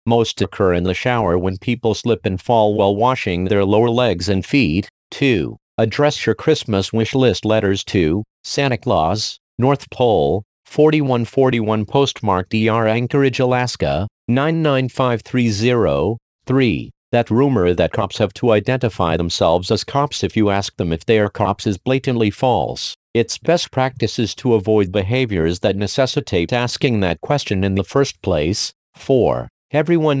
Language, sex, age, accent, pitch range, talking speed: English, male, 50-69, American, 100-130 Hz, 150 wpm